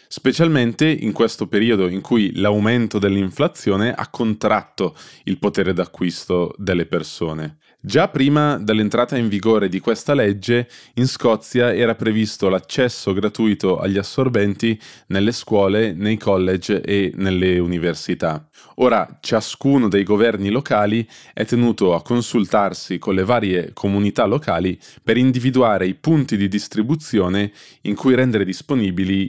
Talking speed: 125 wpm